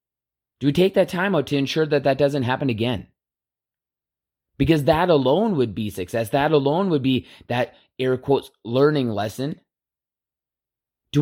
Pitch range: 115-150 Hz